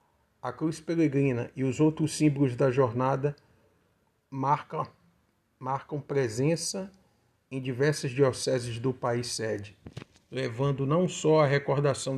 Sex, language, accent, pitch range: male, Portuguese, Brazilian, 125-155 Hz